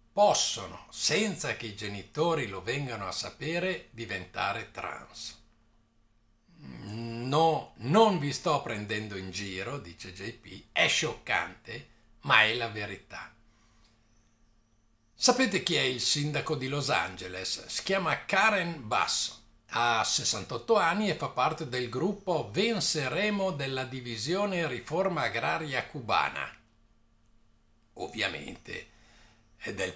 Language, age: Italian, 60-79